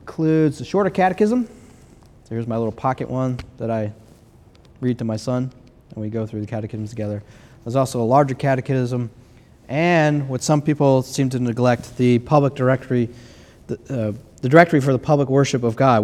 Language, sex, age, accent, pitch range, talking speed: English, male, 30-49, American, 110-135 Hz, 175 wpm